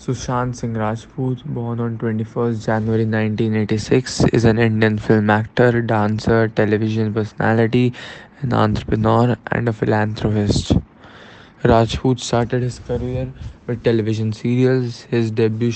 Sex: male